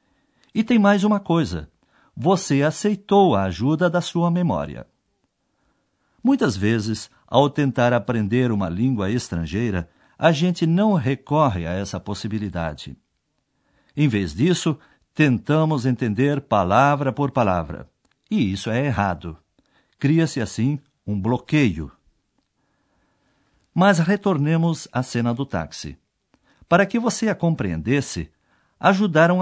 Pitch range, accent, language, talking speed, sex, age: 110-170 Hz, Brazilian, Portuguese, 110 wpm, male, 60-79